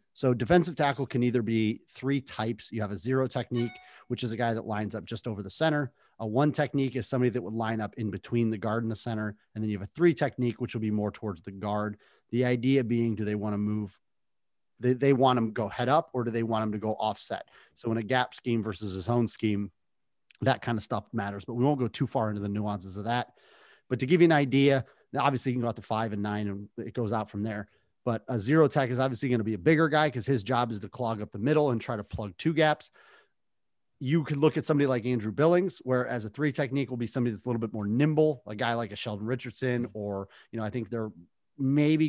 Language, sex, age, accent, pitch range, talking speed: English, male, 30-49, American, 110-135 Hz, 265 wpm